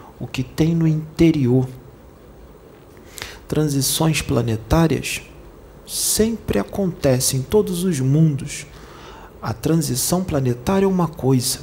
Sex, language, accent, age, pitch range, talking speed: male, Portuguese, Brazilian, 40-59, 120-155 Hz, 100 wpm